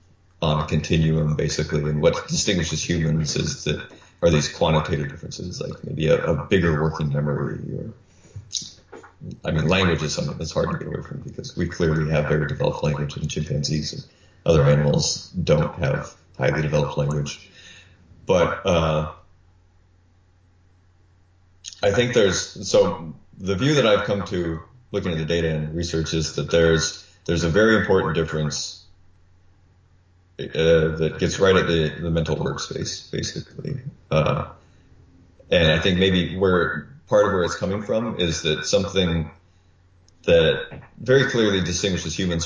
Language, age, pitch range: English, 30-49, 80-90 Hz